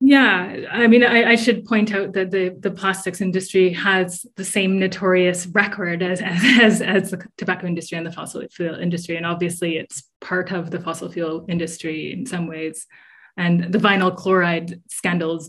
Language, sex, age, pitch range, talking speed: English, female, 20-39, 170-195 Hz, 175 wpm